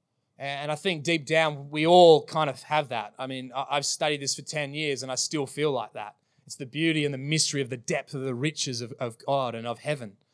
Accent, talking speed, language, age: Australian, 250 wpm, English, 20-39